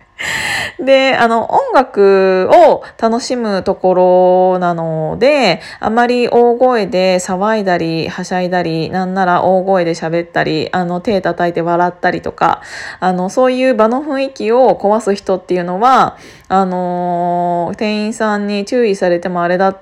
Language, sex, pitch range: Japanese, female, 185-240 Hz